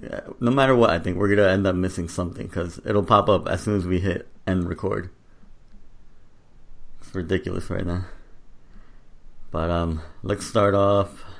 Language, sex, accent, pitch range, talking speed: English, male, American, 90-105 Hz, 165 wpm